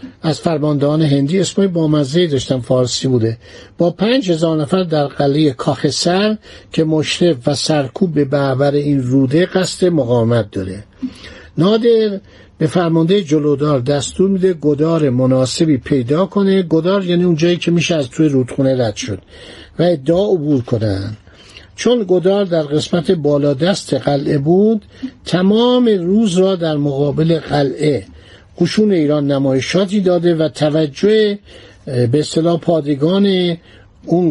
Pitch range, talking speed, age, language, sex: 140-190 Hz, 130 wpm, 60-79, Persian, male